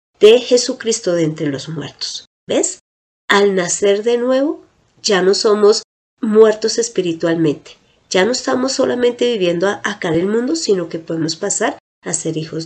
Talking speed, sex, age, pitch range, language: 150 wpm, female, 30-49, 175-260 Hz, Spanish